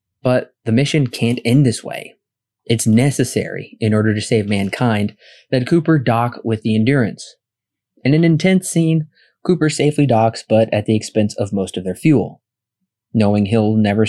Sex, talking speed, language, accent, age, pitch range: male, 165 wpm, English, American, 20-39, 110-140 Hz